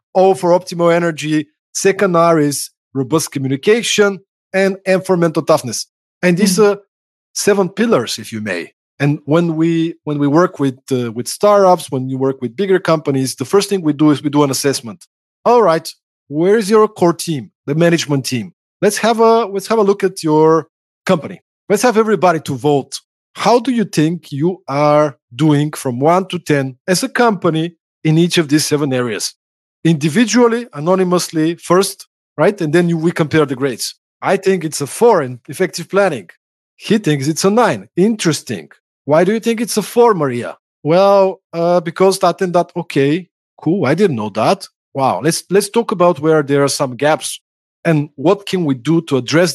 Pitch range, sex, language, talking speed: 145-190 Hz, male, English, 185 wpm